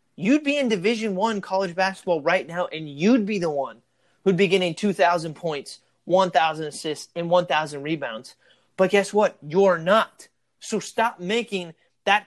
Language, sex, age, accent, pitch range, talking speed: English, male, 30-49, American, 170-215 Hz, 160 wpm